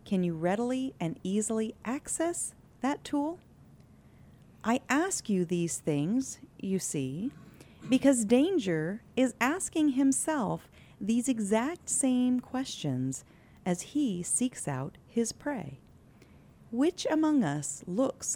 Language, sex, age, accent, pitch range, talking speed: English, female, 40-59, American, 160-255 Hz, 110 wpm